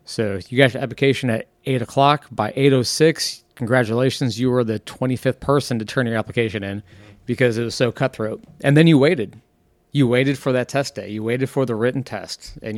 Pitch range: 115-130 Hz